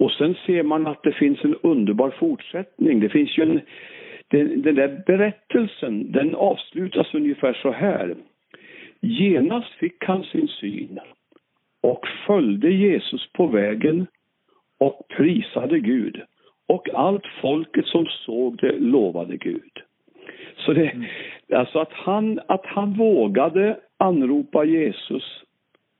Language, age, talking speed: Swedish, 60-79, 125 wpm